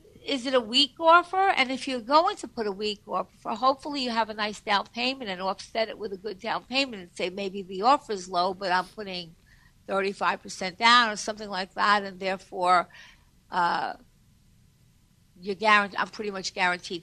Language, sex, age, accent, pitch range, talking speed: English, female, 60-79, American, 200-275 Hz, 190 wpm